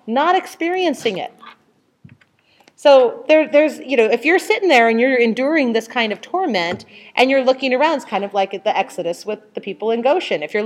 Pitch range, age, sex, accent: 200-290 Hz, 40-59, female, American